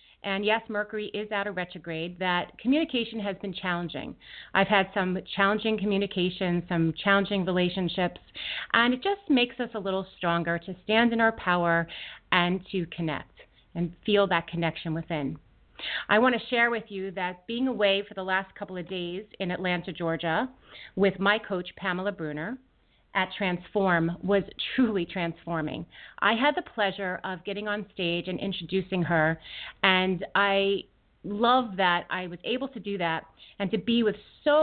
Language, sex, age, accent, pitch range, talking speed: English, female, 30-49, American, 175-220 Hz, 165 wpm